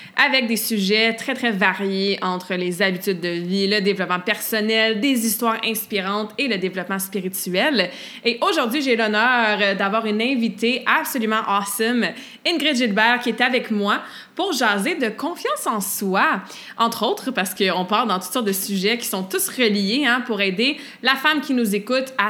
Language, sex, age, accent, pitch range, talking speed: French, female, 20-39, Canadian, 205-250 Hz, 175 wpm